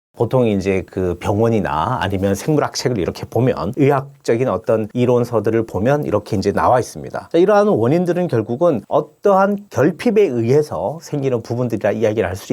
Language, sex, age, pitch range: Korean, male, 40-59, 105-145 Hz